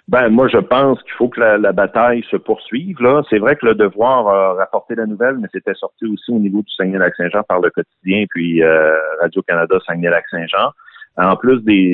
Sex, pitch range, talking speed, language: male, 85-105 Hz, 200 wpm, French